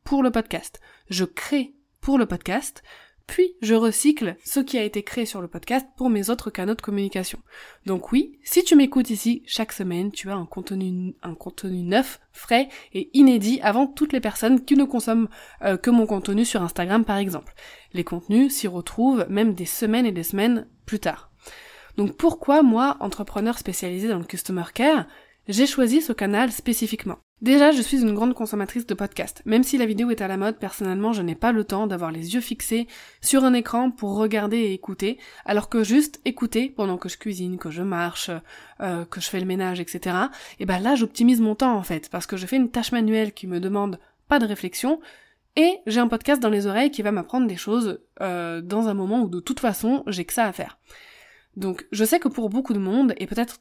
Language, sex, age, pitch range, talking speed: French, female, 20-39, 195-255 Hz, 215 wpm